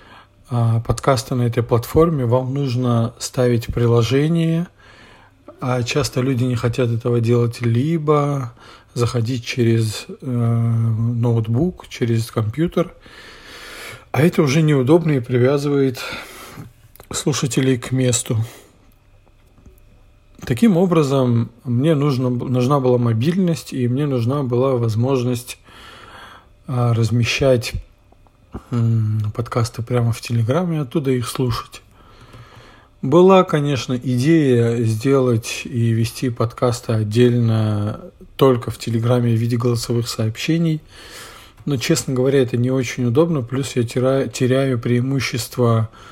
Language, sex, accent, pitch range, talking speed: Russian, male, native, 115-135 Hz, 100 wpm